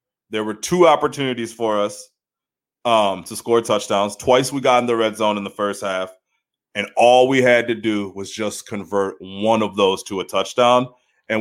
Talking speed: 195 wpm